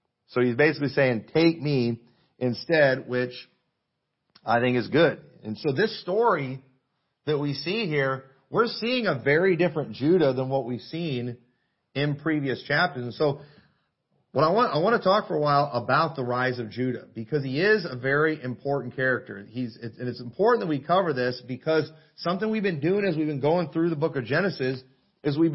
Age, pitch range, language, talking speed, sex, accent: 40-59, 130-175 Hz, English, 190 wpm, male, American